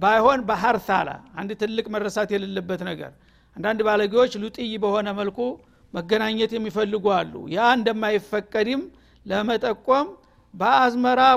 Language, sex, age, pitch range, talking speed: Amharic, male, 60-79, 210-245 Hz, 105 wpm